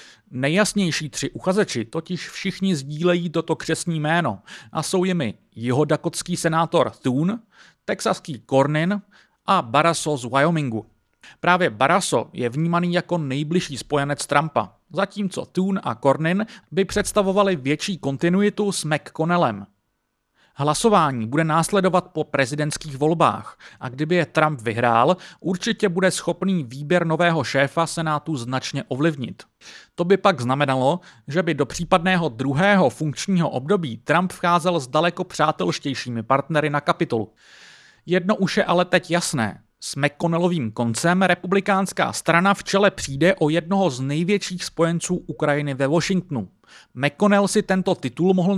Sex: male